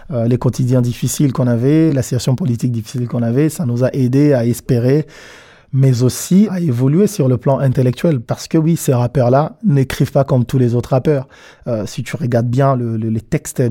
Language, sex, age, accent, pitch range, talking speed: French, male, 30-49, French, 125-150 Hz, 200 wpm